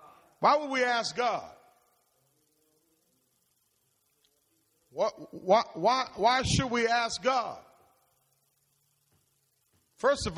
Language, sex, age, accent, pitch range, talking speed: English, male, 40-59, American, 155-235 Hz, 80 wpm